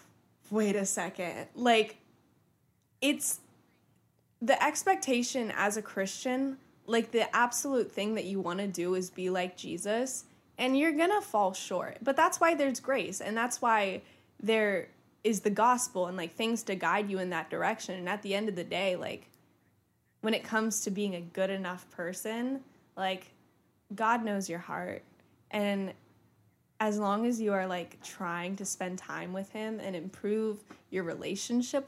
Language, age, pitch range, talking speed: English, 10-29, 185-240 Hz, 165 wpm